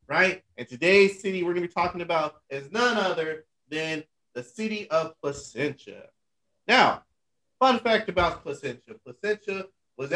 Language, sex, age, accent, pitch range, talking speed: English, male, 30-49, American, 125-165 Hz, 150 wpm